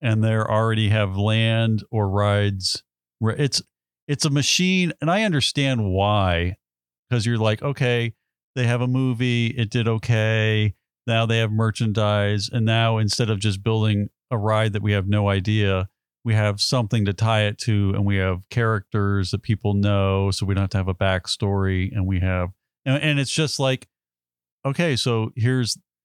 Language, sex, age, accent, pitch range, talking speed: English, male, 40-59, American, 100-130 Hz, 175 wpm